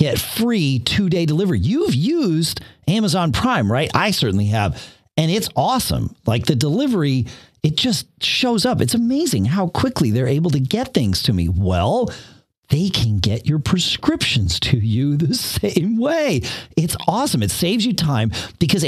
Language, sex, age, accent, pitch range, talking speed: English, male, 40-59, American, 115-170 Hz, 160 wpm